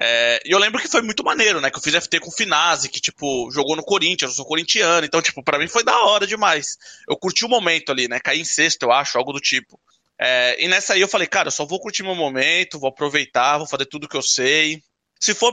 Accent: Brazilian